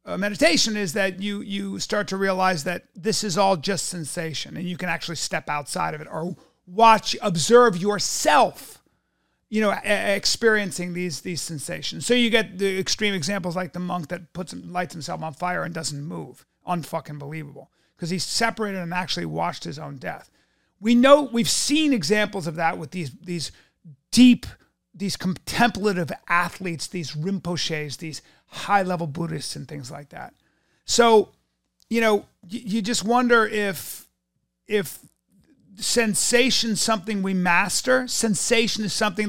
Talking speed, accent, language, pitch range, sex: 155 wpm, American, English, 175-225 Hz, male